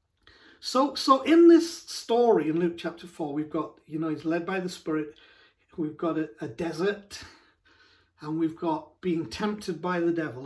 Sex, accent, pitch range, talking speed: male, British, 165-215 Hz, 180 wpm